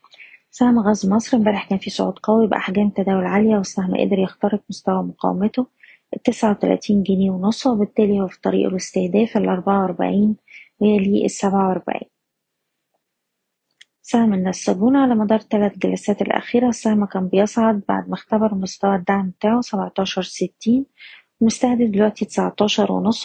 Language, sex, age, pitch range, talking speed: Arabic, female, 20-39, 195-220 Hz, 135 wpm